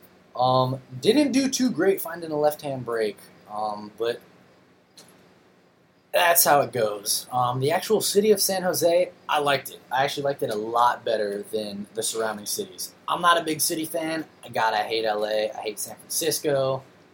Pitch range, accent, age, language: 115-155 Hz, American, 20-39, English